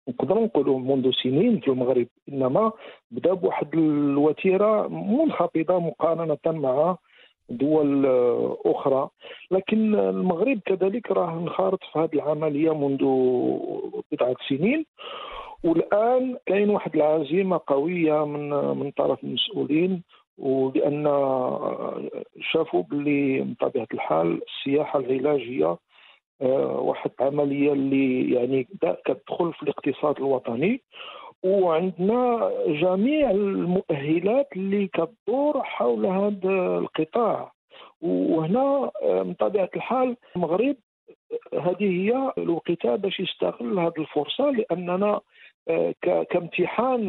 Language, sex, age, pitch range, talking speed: English, male, 50-69, 145-225 Hz, 85 wpm